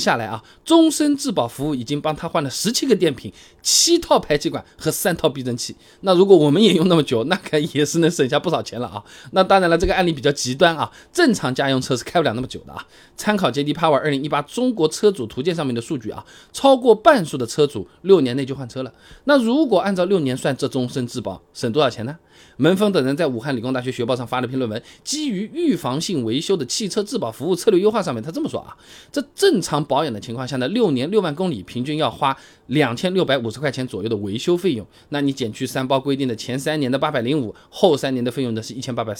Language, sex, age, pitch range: Chinese, male, 20-39, 125-185 Hz